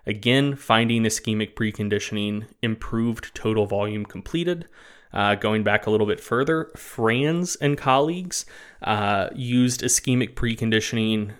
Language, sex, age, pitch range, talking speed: English, male, 20-39, 105-125 Hz, 115 wpm